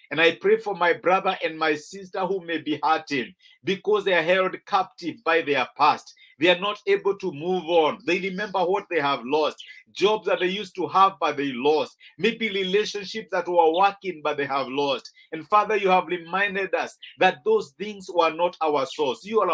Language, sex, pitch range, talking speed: English, male, 170-215 Hz, 205 wpm